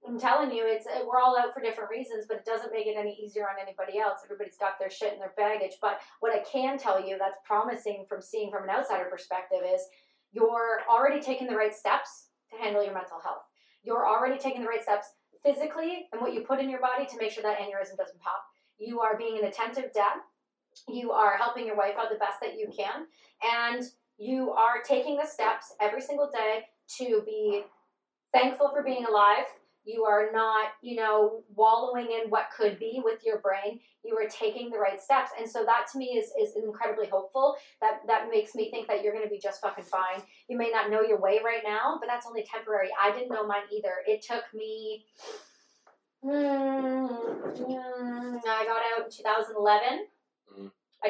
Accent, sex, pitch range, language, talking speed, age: American, female, 210-250 Hz, English, 205 wpm, 30-49